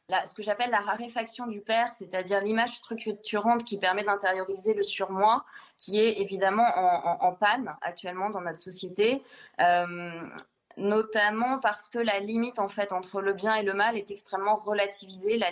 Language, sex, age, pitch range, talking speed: French, female, 20-39, 185-225 Hz, 175 wpm